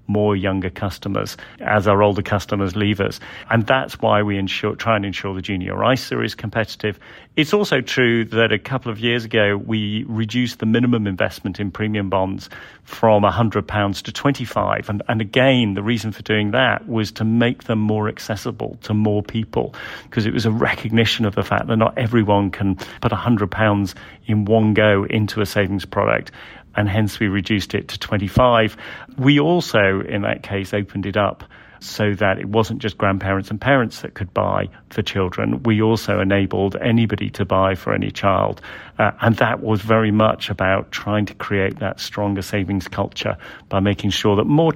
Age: 40-59